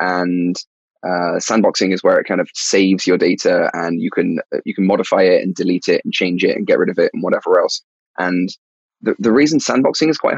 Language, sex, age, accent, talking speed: English, male, 20-39, British, 225 wpm